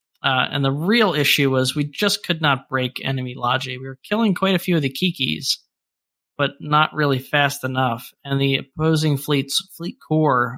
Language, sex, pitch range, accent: English, male, 135-160 Hz, American